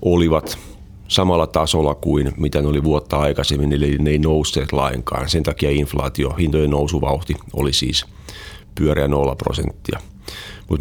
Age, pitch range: 40-59, 75-95 Hz